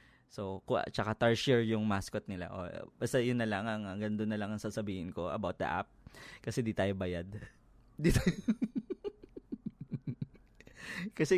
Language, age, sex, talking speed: Filipino, 20-39, male, 150 wpm